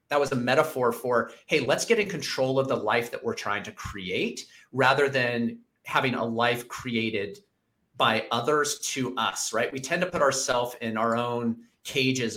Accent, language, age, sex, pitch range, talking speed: American, English, 30-49, male, 120-175 Hz, 185 wpm